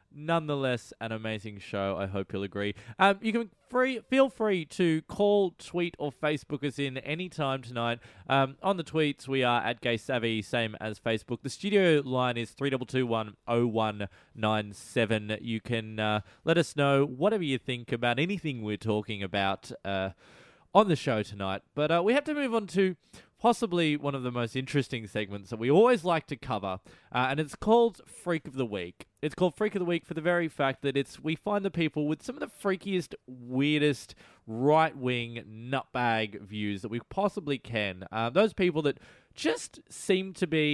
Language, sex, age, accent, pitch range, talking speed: English, male, 20-39, Australian, 110-170 Hz, 195 wpm